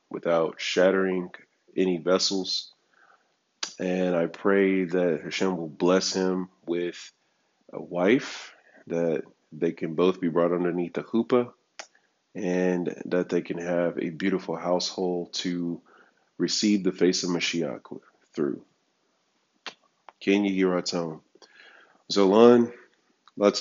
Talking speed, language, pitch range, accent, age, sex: 115 wpm, English, 85-100 Hz, American, 30-49, male